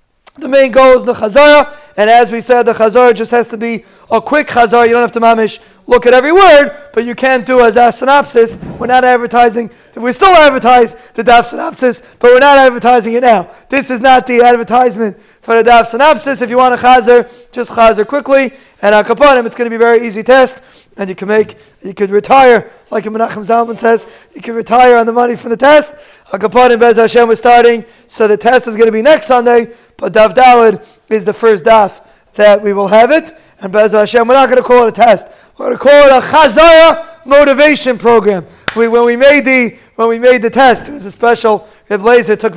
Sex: male